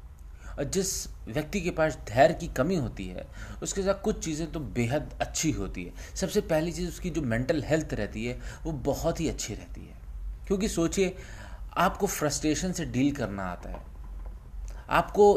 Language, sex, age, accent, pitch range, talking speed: Hindi, male, 30-49, native, 100-150 Hz, 170 wpm